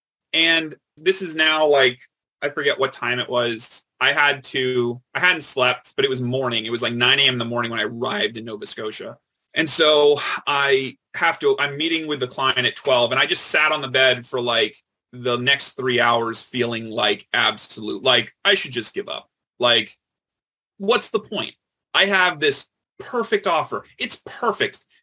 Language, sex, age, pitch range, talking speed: English, male, 30-49, 120-160 Hz, 190 wpm